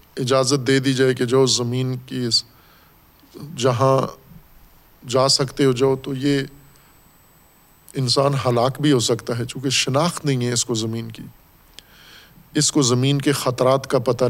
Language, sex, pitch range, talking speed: Urdu, male, 120-140 Hz, 150 wpm